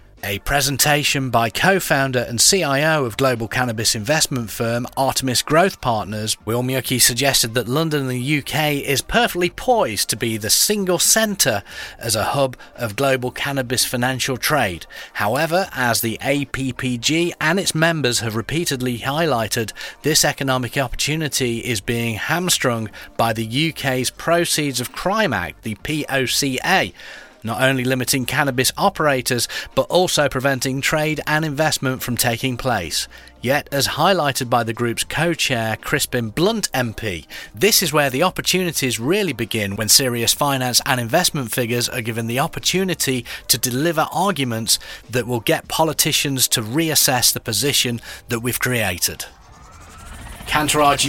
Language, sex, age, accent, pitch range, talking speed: English, male, 30-49, British, 120-150 Hz, 140 wpm